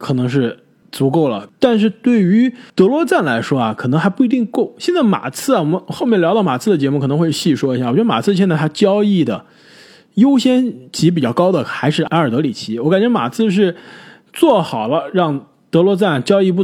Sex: male